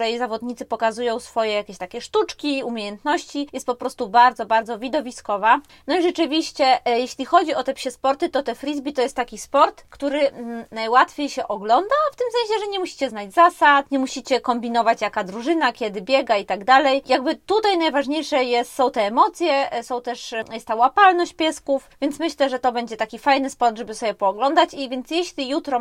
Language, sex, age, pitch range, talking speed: Polish, female, 20-39, 230-290 Hz, 190 wpm